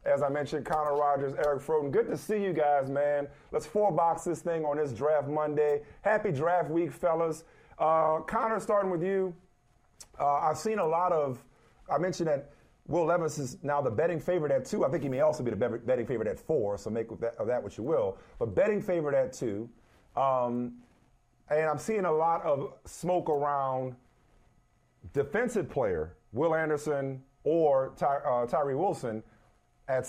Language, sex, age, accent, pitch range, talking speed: English, male, 40-59, American, 135-185 Hz, 185 wpm